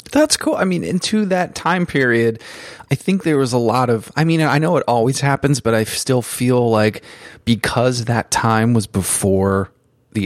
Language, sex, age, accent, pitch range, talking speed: English, male, 30-49, American, 105-125 Hz, 195 wpm